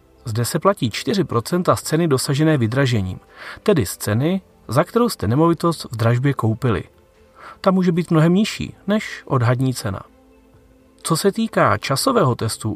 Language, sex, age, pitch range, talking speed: Czech, male, 40-59, 110-165 Hz, 145 wpm